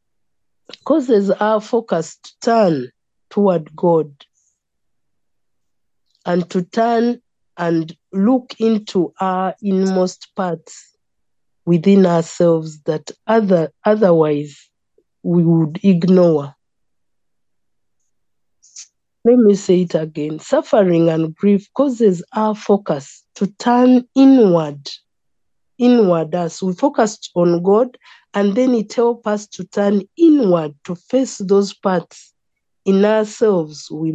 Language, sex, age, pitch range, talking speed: English, female, 50-69, 165-210 Hz, 100 wpm